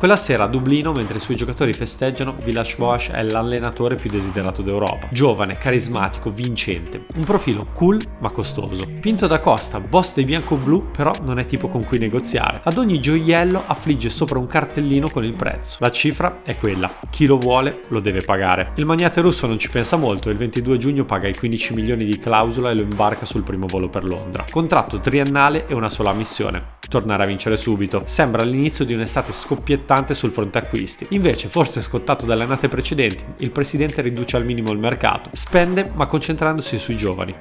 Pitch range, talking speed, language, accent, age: 110-150 Hz, 190 wpm, Italian, native, 30-49